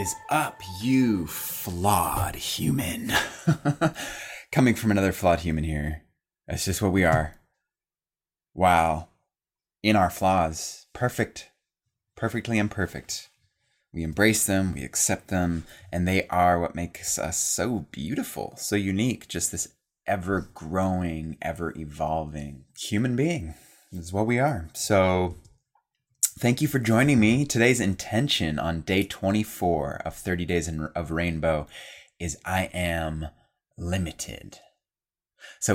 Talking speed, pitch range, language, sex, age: 115 wpm, 80-105 Hz, English, male, 20-39